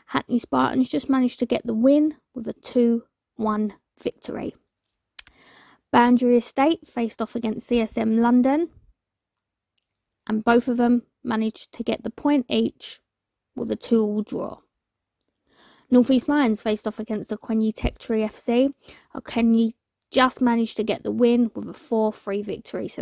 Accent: British